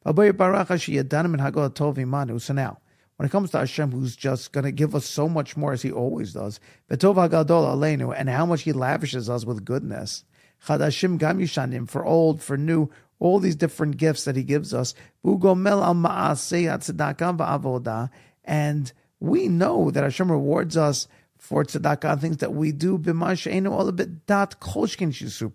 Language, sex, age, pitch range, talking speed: English, male, 50-69, 130-170 Hz, 125 wpm